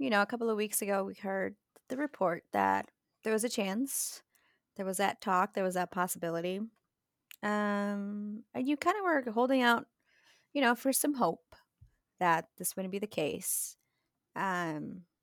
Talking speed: 175 wpm